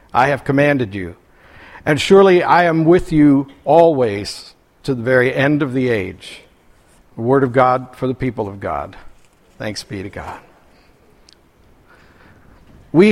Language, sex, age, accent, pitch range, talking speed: English, male, 60-79, American, 140-180 Hz, 145 wpm